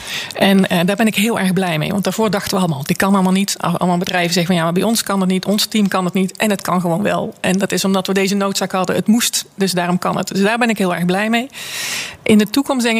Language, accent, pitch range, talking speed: Dutch, Dutch, 180-205 Hz, 300 wpm